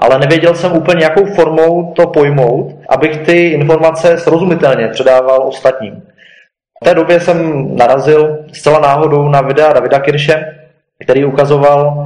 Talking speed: 135 wpm